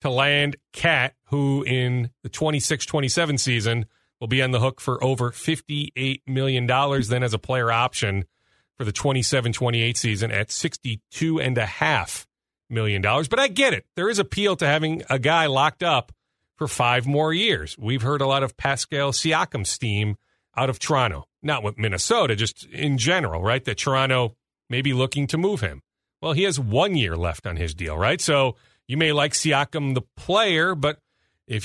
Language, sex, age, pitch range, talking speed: English, male, 40-59, 115-150 Hz, 175 wpm